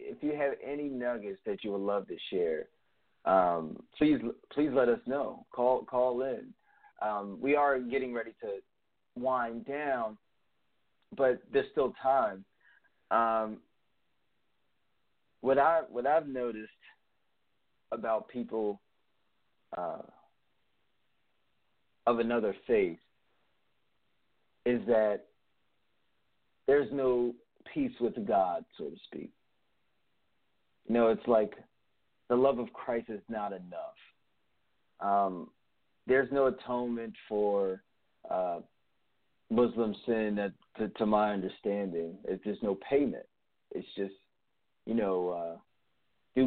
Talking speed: 110 wpm